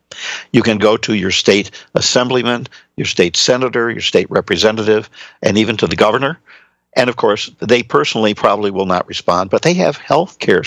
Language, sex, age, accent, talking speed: English, male, 60-79, American, 180 wpm